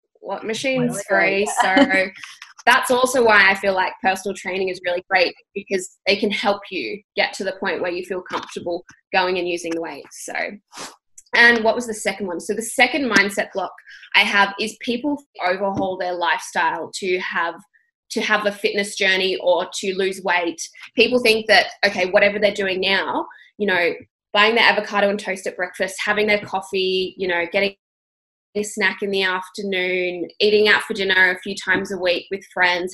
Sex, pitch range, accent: female, 185-210 Hz, Australian